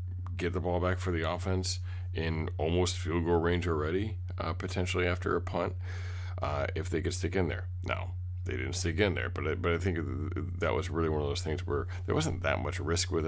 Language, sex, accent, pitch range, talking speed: English, male, American, 85-90 Hz, 230 wpm